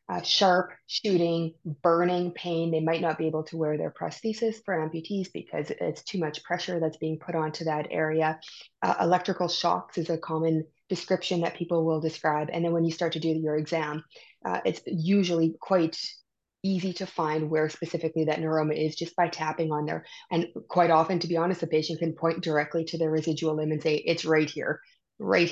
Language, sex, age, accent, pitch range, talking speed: English, female, 20-39, American, 155-175 Hz, 200 wpm